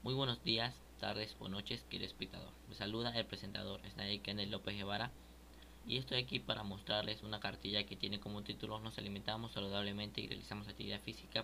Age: 20-39